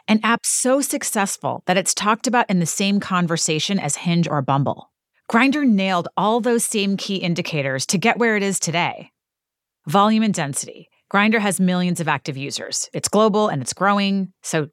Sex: female